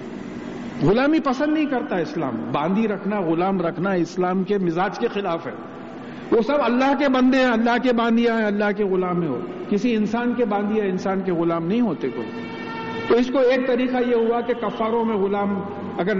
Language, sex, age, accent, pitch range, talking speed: English, male, 50-69, Indian, 200-260 Hz, 185 wpm